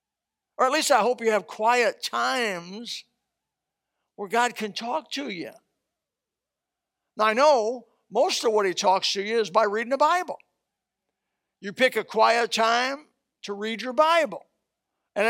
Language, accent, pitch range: English, American, 185-235 Hz